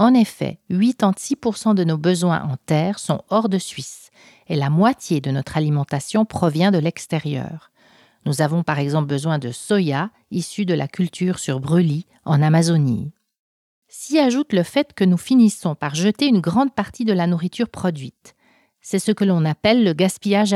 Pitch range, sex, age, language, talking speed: 160-210 Hz, female, 40-59, English, 170 wpm